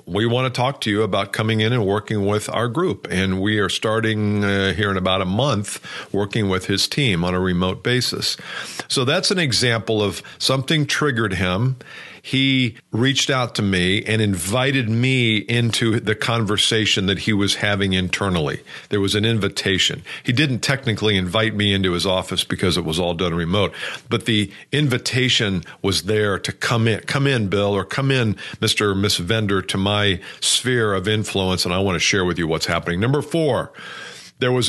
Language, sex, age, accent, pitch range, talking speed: English, male, 50-69, American, 95-125 Hz, 190 wpm